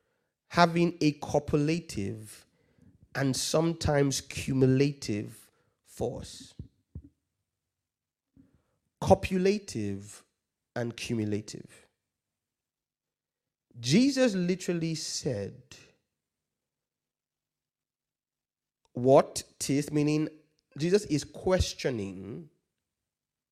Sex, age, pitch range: male, 30-49, 130-210 Hz